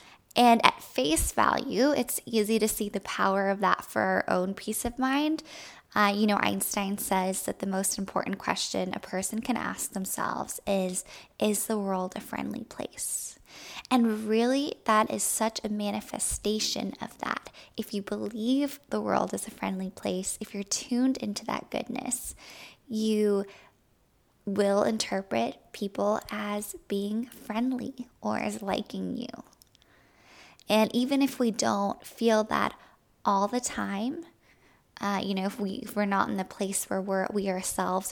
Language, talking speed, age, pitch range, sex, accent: English, 155 wpm, 10-29, 200-240 Hz, female, American